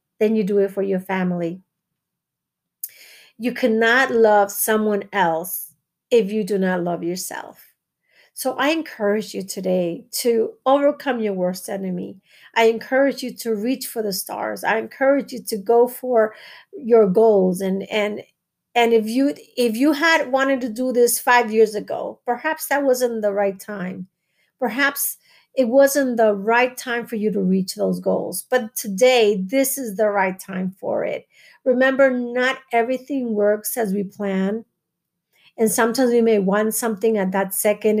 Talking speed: 160 wpm